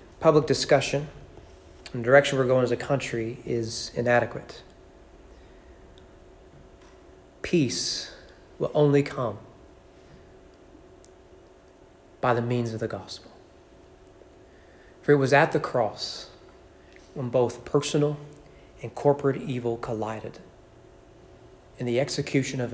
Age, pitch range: 30-49, 115-140 Hz